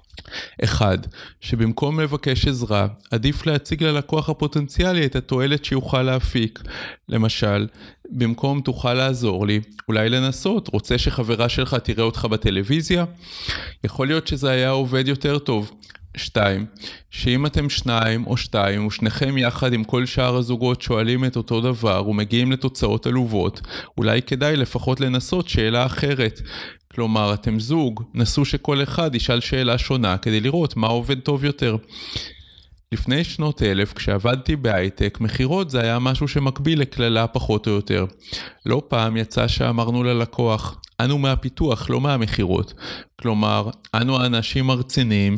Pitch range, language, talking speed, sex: 110-135 Hz, Hebrew, 130 wpm, male